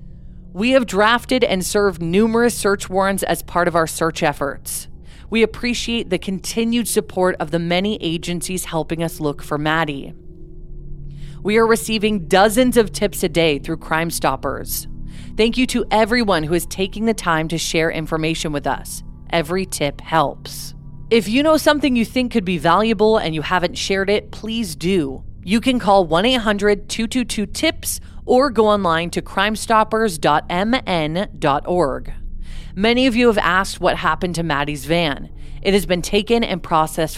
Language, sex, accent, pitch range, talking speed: English, female, American, 160-215 Hz, 155 wpm